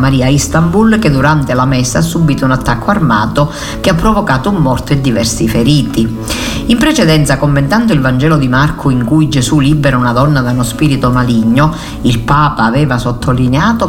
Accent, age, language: native, 50-69, Italian